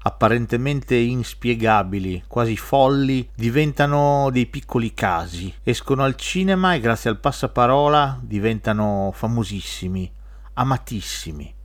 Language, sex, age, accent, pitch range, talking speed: Italian, male, 40-59, native, 105-140 Hz, 95 wpm